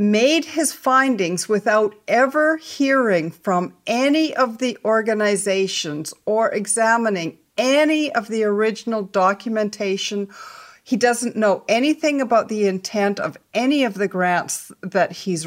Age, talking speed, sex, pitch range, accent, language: 50-69, 125 wpm, female, 190-230 Hz, American, English